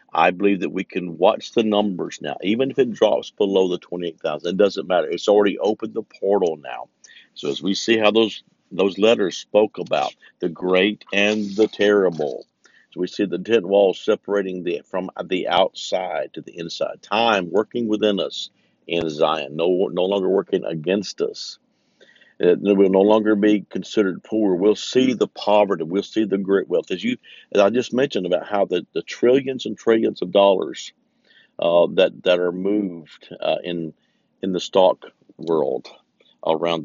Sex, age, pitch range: male, 50-69, 90-110 Hz